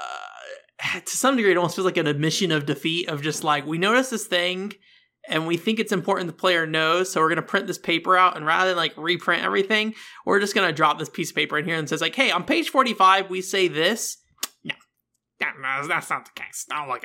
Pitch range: 145-195 Hz